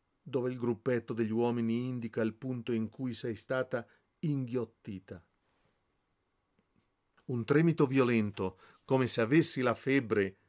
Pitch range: 110-165 Hz